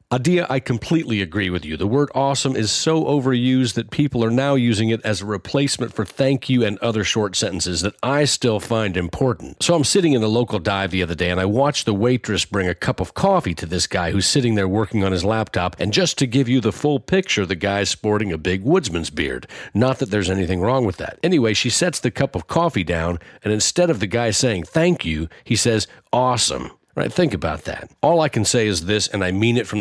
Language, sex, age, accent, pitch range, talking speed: English, male, 50-69, American, 100-135 Hz, 240 wpm